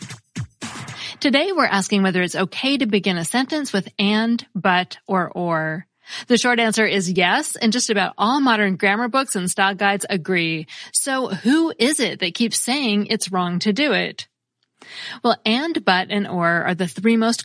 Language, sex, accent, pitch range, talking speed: English, female, American, 175-225 Hz, 180 wpm